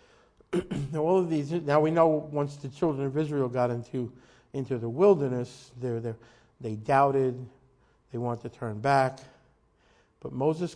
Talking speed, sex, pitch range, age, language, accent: 150 wpm, male, 120-145 Hz, 50-69, English, American